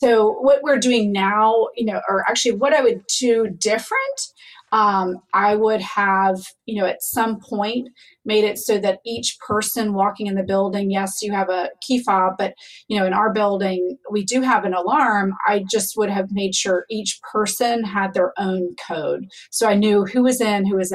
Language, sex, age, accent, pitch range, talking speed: English, female, 30-49, American, 195-230 Hz, 200 wpm